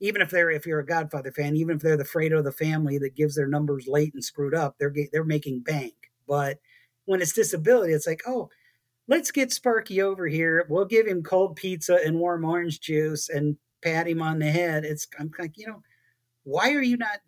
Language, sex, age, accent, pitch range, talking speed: English, male, 40-59, American, 140-175 Hz, 220 wpm